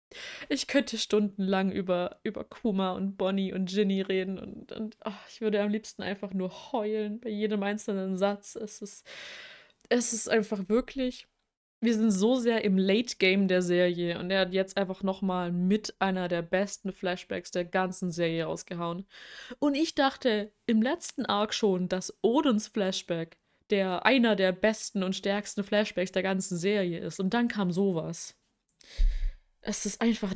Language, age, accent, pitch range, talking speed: German, 20-39, German, 190-225 Hz, 165 wpm